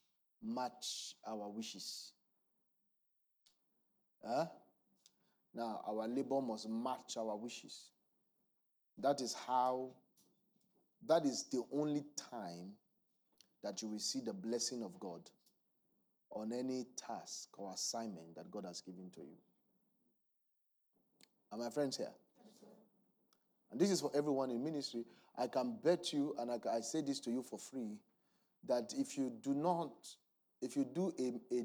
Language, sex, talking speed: English, male, 135 wpm